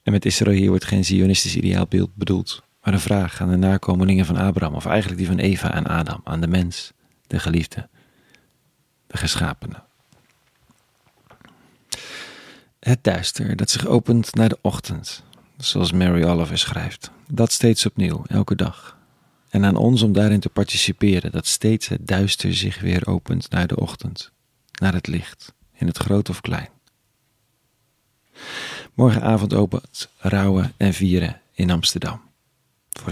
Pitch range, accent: 90-110 Hz, Dutch